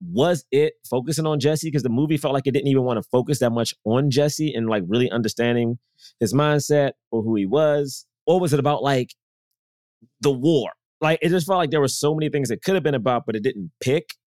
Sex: male